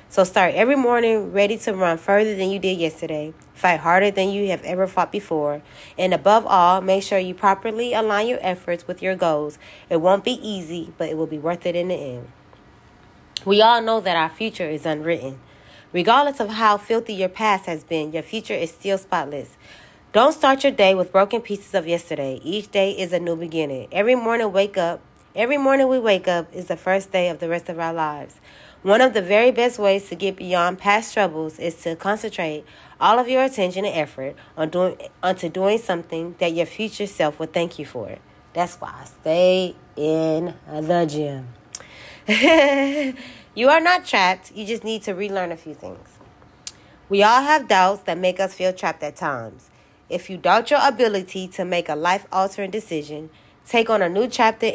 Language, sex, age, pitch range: English, female, 30-49, 170-215 Hz